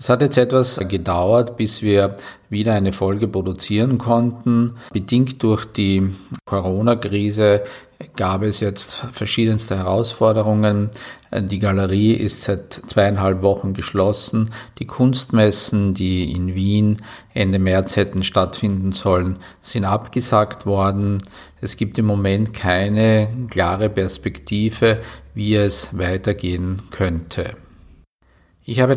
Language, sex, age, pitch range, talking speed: German, male, 50-69, 95-110 Hz, 110 wpm